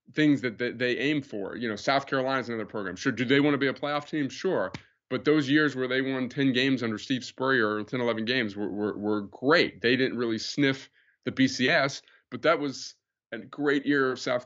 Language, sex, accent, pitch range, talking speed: English, male, American, 110-135 Hz, 225 wpm